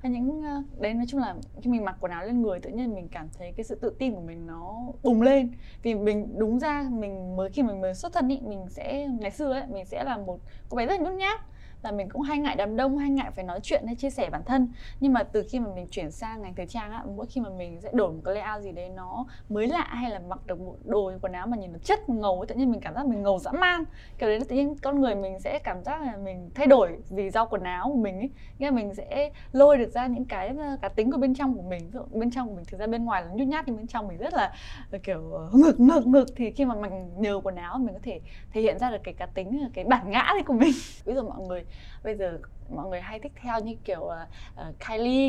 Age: 10-29